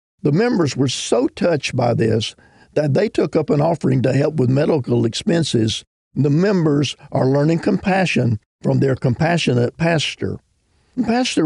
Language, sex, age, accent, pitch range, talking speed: English, male, 50-69, American, 120-160 Hz, 145 wpm